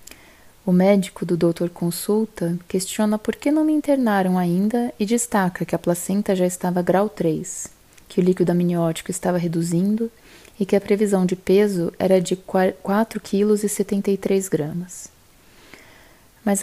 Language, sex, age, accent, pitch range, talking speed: Portuguese, female, 20-39, Brazilian, 180-220 Hz, 135 wpm